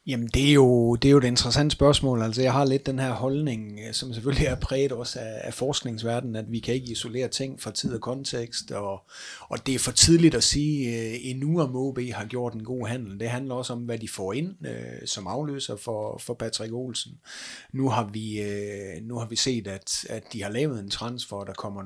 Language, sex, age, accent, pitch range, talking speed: Danish, male, 30-49, native, 105-130 Hz, 225 wpm